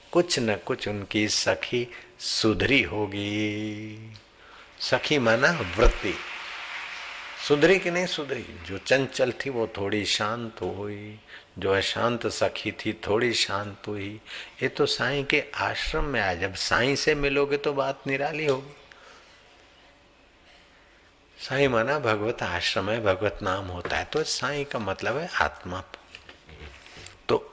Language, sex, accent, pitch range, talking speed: Hindi, male, native, 105-140 Hz, 130 wpm